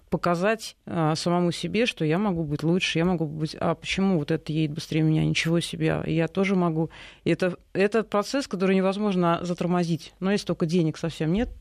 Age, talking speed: 30-49, 185 wpm